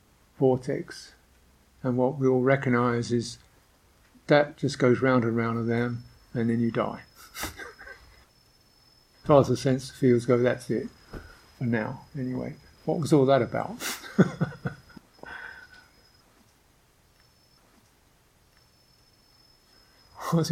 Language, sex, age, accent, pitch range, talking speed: English, male, 60-79, British, 110-130 Hz, 110 wpm